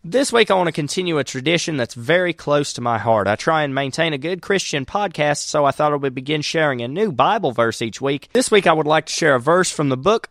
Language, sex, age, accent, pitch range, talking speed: English, male, 30-49, American, 125-175 Hz, 275 wpm